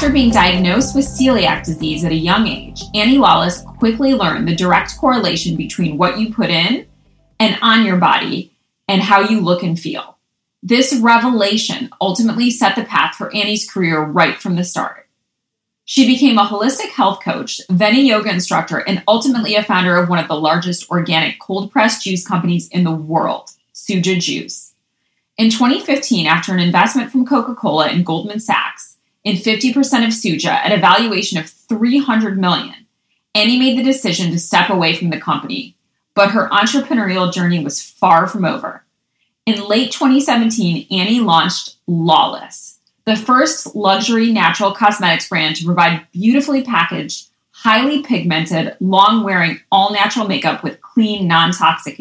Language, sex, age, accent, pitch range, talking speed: English, female, 30-49, American, 175-235 Hz, 155 wpm